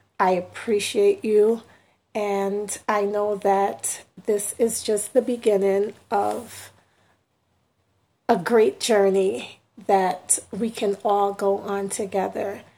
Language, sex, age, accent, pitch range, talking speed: English, female, 40-59, American, 195-215 Hz, 110 wpm